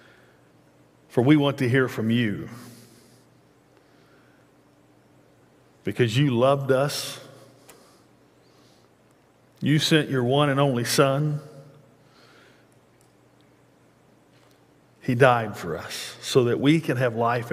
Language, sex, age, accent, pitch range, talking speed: English, male, 50-69, American, 130-155 Hz, 95 wpm